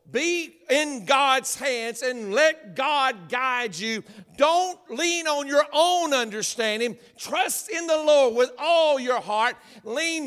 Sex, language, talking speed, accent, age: male, English, 140 wpm, American, 50-69